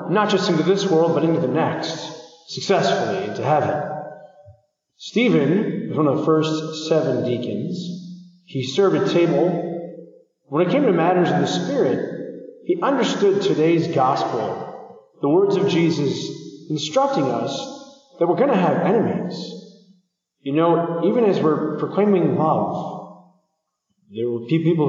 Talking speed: 140 wpm